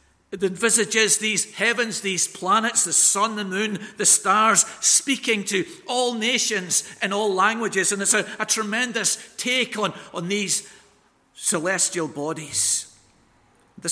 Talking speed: 135 wpm